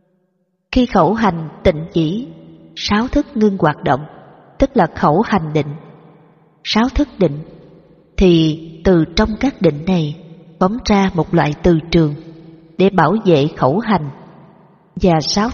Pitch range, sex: 160-210 Hz, female